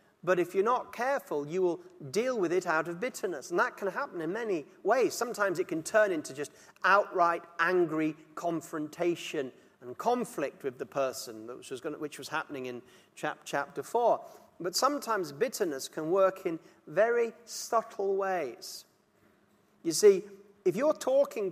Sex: male